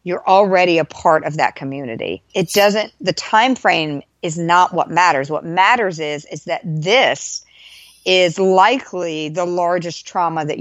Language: English